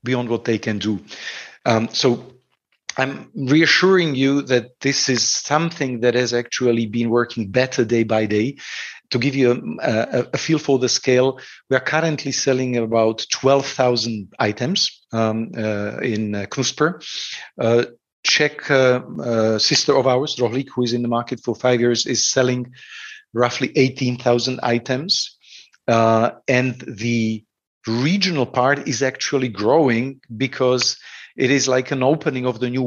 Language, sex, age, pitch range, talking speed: English, male, 50-69, 120-140 Hz, 145 wpm